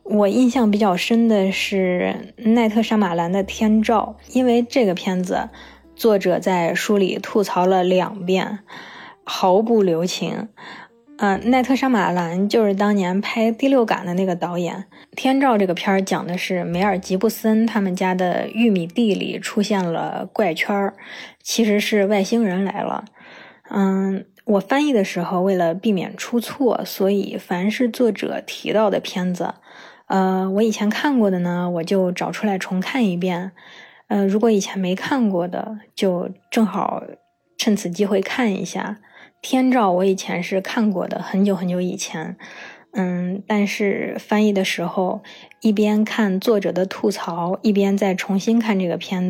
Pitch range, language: 185-225 Hz, Chinese